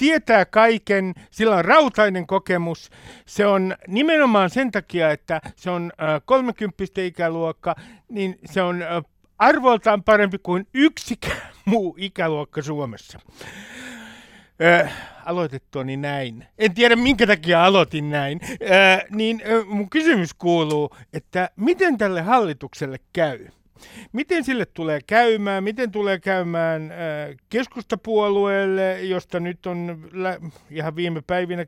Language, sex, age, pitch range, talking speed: Finnish, male, 60-79, 155-210 Hz, 115 wpm